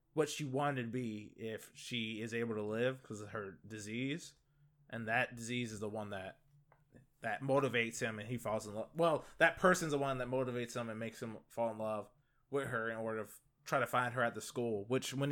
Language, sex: English, male